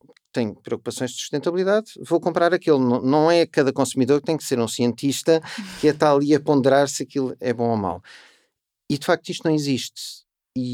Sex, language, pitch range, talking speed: male, Portuguese, 115-150 Hz, 195 wpm